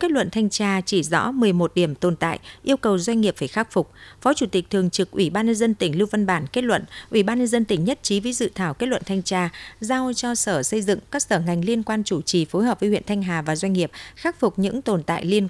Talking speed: 285 wpm